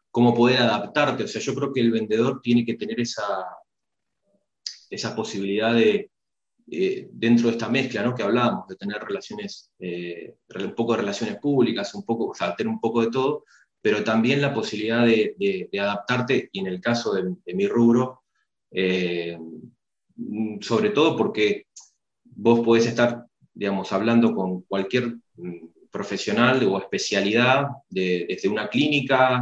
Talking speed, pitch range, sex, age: 155 wpm, 95-125 Hz, male, 20-39